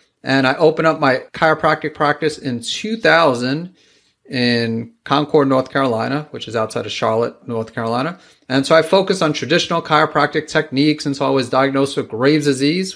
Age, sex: 30-49, male